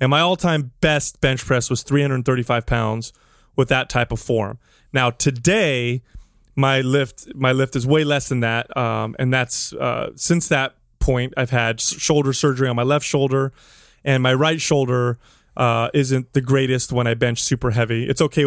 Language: English